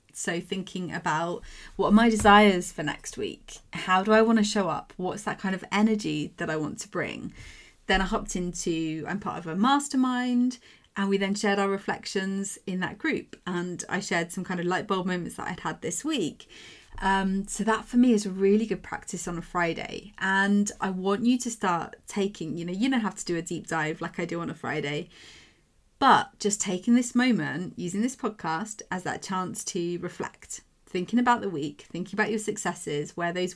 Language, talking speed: English, 210 wpm